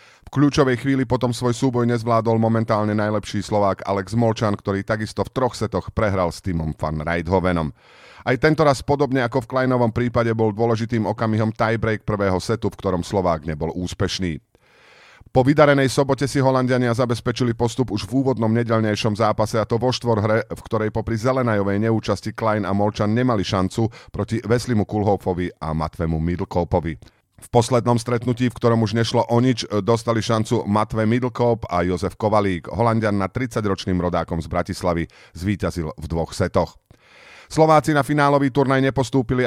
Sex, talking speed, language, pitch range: male, 160 wpm, Slovak, 95-125 Hz